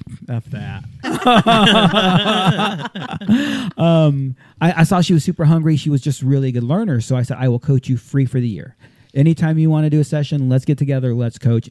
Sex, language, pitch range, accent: male, English, 125-165 Hz, American